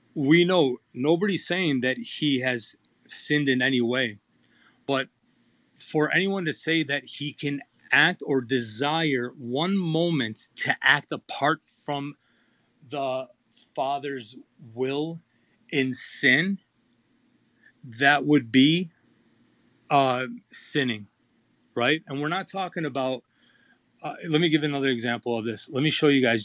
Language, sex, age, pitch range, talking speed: English, male, 30-49, 125-160 Hz, 125 wpm